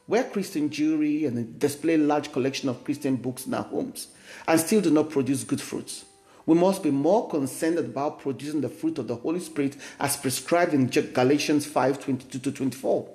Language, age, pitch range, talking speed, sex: English, 50-69, 140-190 Hz, 180 wpm, male